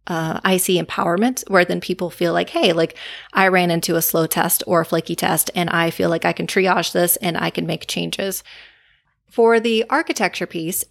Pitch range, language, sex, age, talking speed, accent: 170-195 Hz, English, female, 30-49, 210 wpm, American